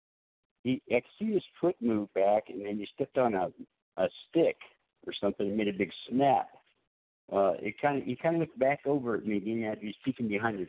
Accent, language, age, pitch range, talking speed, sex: American, English, 60-79, 100-135 Hz, 235 wpm, male